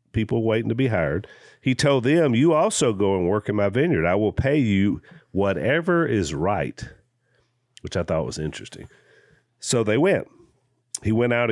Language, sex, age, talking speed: English, male, 50-69, 175 wpm